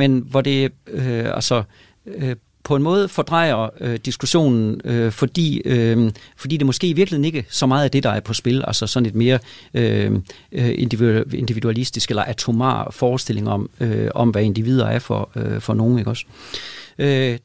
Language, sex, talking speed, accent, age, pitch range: Danish, male, 175 wpm, native, 40-59, 115-145 Hz